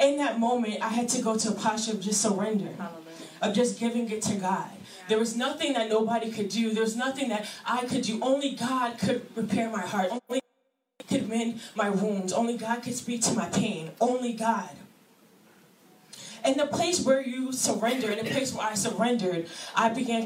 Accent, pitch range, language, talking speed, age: American, 215-250 Hz, English, 200 wpm, 10-29